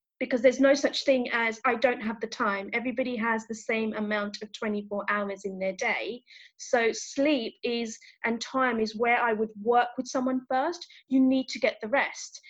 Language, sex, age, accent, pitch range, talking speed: English, female, 30-49, British, 225-275 Hz, 195 wpm